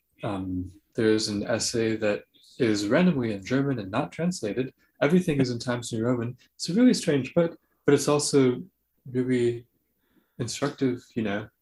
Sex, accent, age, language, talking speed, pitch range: male, American, 20-39, English, 155 wpm, 110-135 Hz